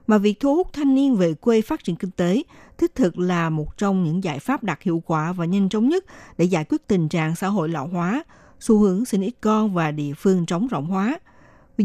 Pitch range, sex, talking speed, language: 175-235 Hz, female, 245 wpm, Vietnamese